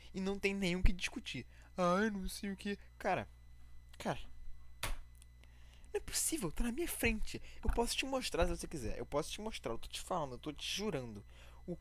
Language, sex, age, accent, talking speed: Portuguese, male, 20-39, Brazilian, 205 wpm